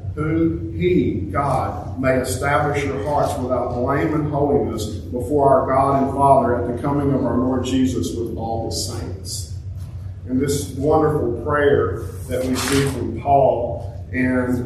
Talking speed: 150 wpm